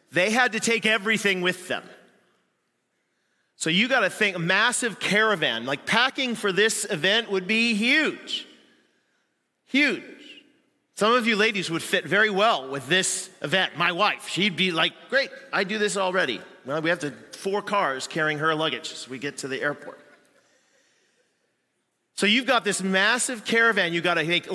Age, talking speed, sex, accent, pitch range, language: 40-59, 165 wpm, male, American, 165-215 Hz, English